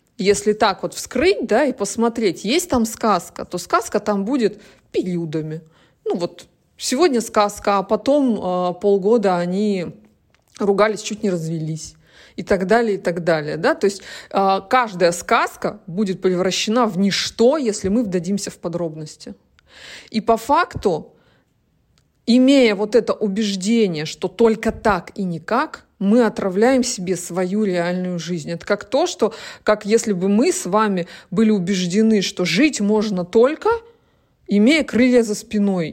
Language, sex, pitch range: Russian, female, 185-230 Hz